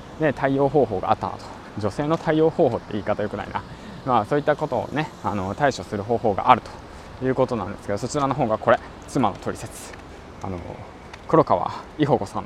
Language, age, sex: Japanese, 20-39, male